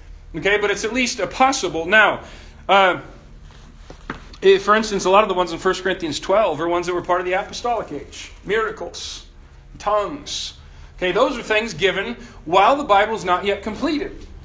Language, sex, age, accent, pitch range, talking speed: English, male, 40-59, American, 170-225 Hz, 185 wpm